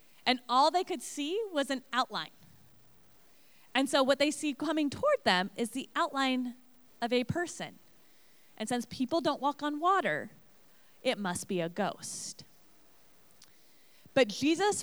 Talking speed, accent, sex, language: 145 wpm, American, female, English